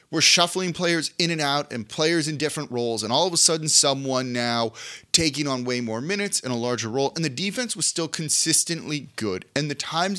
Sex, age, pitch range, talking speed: male, 30-49, 115-160 Hz, 220 wpm